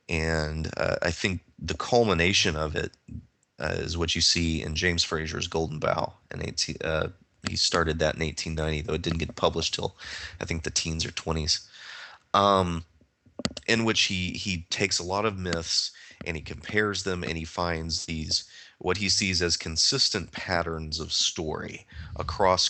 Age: 30-49